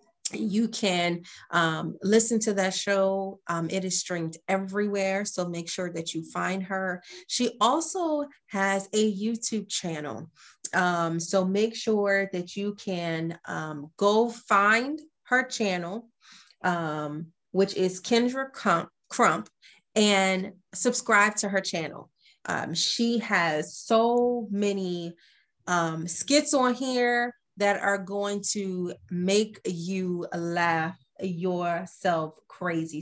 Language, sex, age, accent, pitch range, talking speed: English, female, 30-49, American, 170-215 Hz, 120 wpm